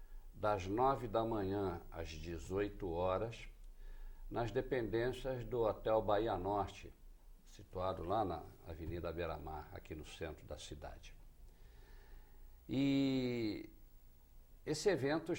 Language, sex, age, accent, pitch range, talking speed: Portuguese, male, 60-79, Brazilian, 90-130 Hz, 105 wpm